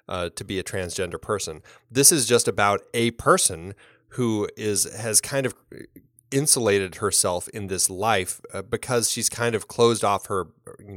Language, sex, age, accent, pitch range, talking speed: English, male, 30-49, American, 95-120 Hz, 170 wpm